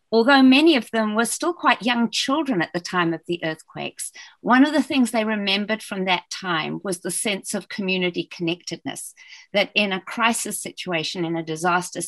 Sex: female